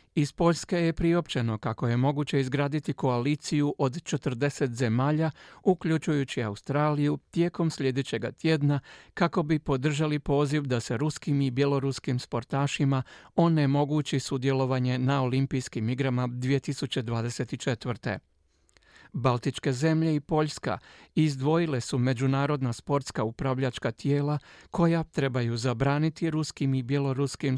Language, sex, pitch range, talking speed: Croatian, male, 130-150 Hz, 105 wpm